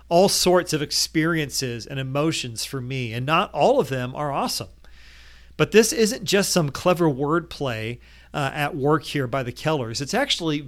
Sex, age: male, 40-59